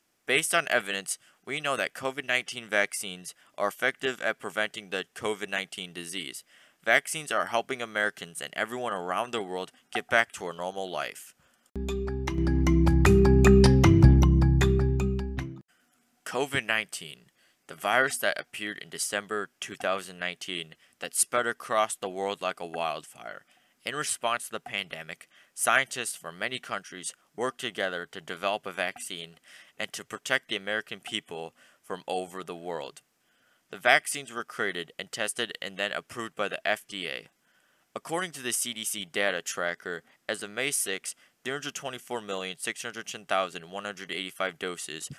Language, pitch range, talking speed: English, 90-115 Hz, 125 wpm